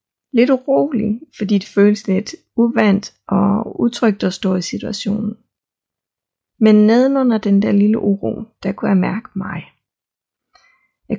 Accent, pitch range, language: native, 190-220 Hz, Danish